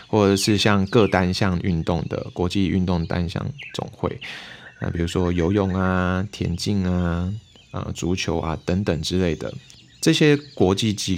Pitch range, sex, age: 85-115 Hz, male, 20-39